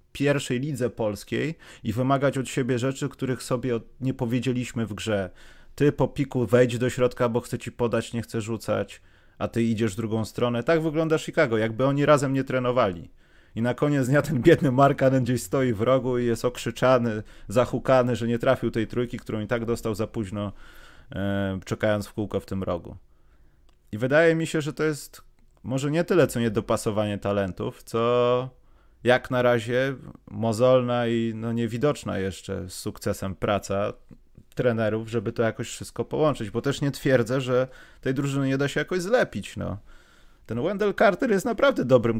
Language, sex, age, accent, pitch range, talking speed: Polish, male, 30-49, native, 105-130 Hz, 175 wpm